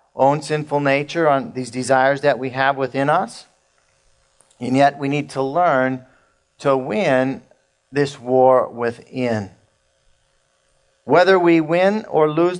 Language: English